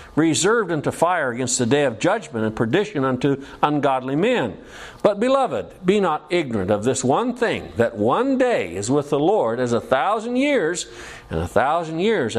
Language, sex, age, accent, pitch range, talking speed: English, male, 60-79, American, 140-215 Hz, 180 wpm